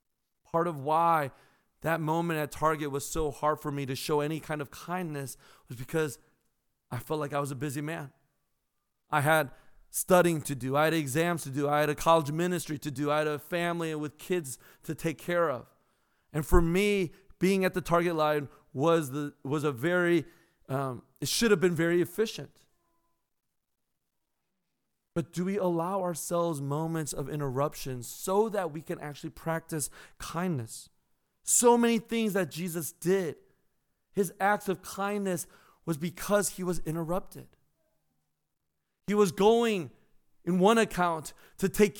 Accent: American